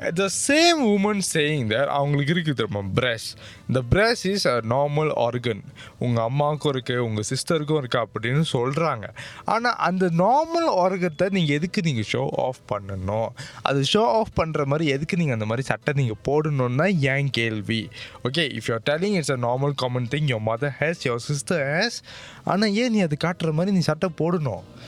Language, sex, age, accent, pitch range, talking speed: Tamil, male, 20-39, native, 115-155 Hz, 190 wpm